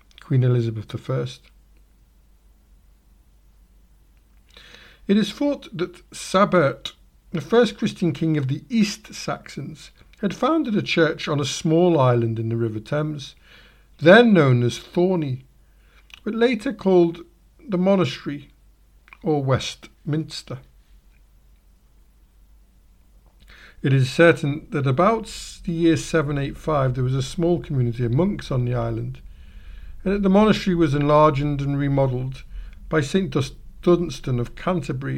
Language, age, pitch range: English, 50-69, 115-175 Hz